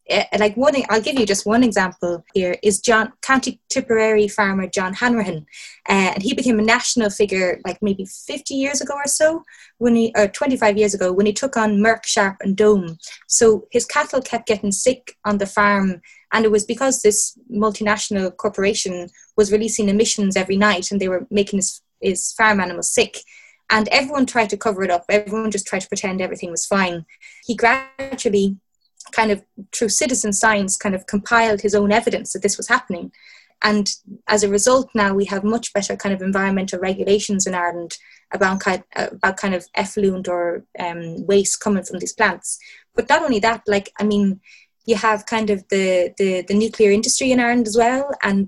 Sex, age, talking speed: female, 20-39, 190 wpm